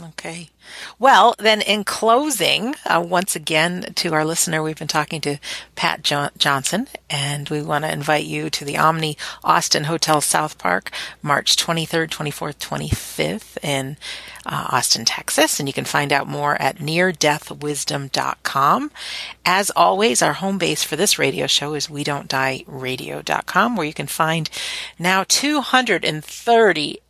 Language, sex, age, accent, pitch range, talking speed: English, female, 40-59, American, 140-165 Hz, 150 wpm